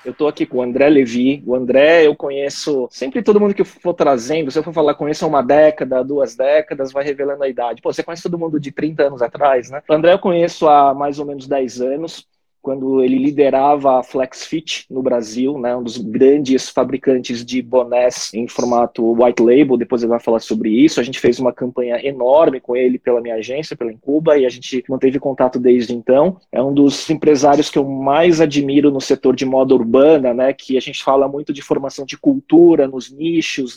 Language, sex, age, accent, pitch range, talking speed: Portuguese, male, 20-39, Brazilian, 130-160 Hz, 215 wpm